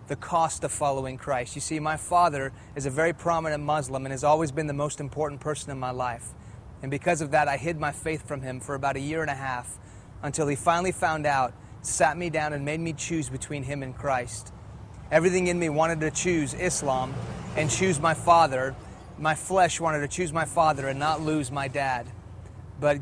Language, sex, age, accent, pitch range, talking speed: English, male, 30-49, American, 130-160 Hz, 215 wpm